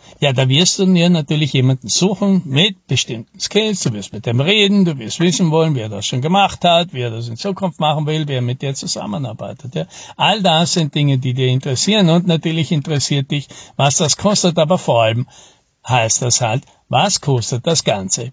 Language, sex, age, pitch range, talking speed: German, male, 60-79, 130-175 Hz, 195 wpm